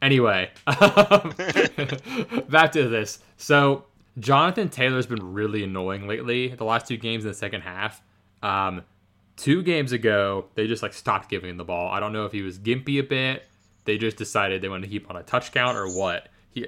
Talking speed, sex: 200 wpm, male